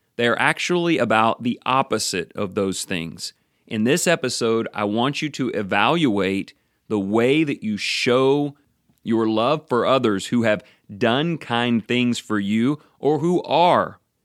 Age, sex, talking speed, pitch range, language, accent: 30-49, male, 145 wpm, 105-145 Hz, English, American